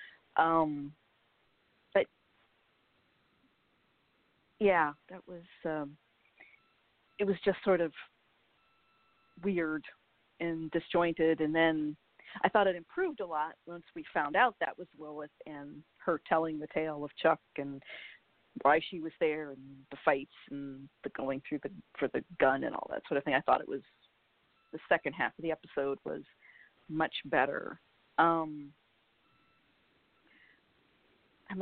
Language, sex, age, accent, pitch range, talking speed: English, female, 40-59, American, 150-195 Hz, 135 wpm